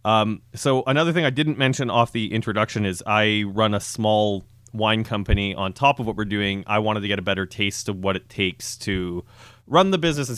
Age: 30-49